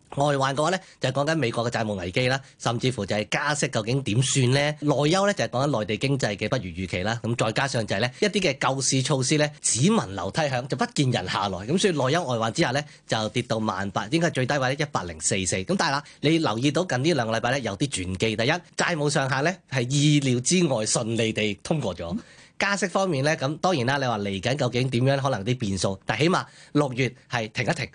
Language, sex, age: Chinese, male, 30-49